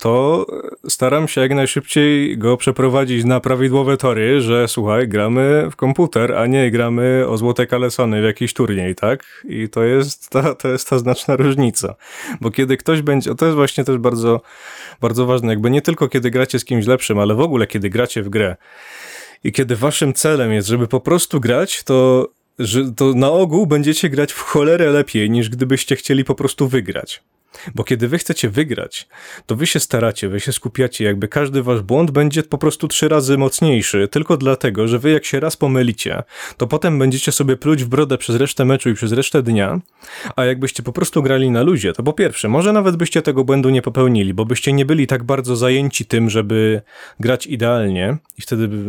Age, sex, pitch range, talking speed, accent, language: 20-39, male, 120-145 Hz, 190 wpm, native, Polish